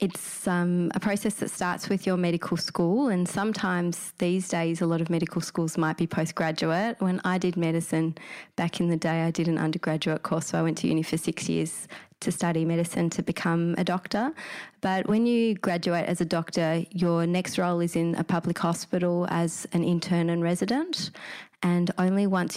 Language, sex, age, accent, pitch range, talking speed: English, female, 20-39, Australian, 165-190 Hz, 195 wpm